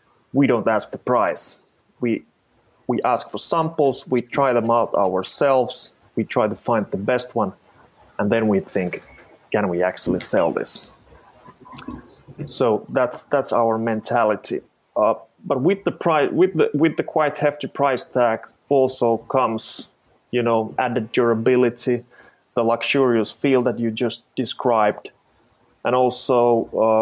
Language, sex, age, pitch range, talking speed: English, male, 30-49, 105-125 Hz, 145 wpm